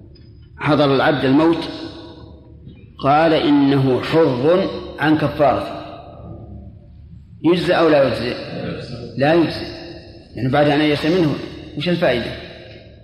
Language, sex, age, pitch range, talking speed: Arabic, male, 40-59, 120-170 Hz, 100 wpm